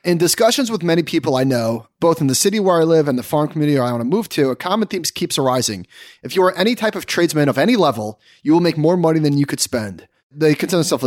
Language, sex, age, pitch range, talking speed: English, male, 30-49, 130-175 Hz, 270 wpm